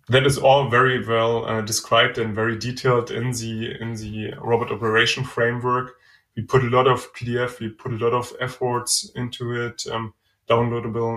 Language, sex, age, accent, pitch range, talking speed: English, male, 20-39, German, 115-130 Hz, 175 wpm